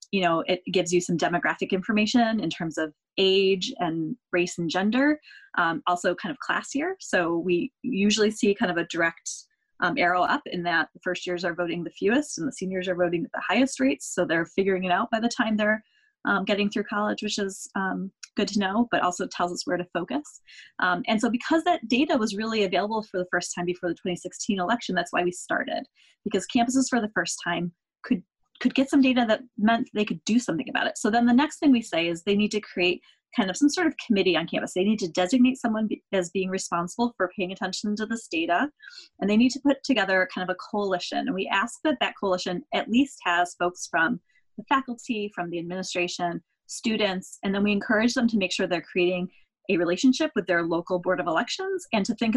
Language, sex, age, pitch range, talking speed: English, female, 20-39, 180-240 Hz, 230 wpm